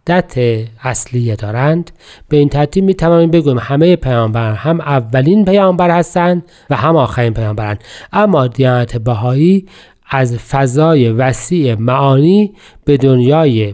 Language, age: Persian, 40-59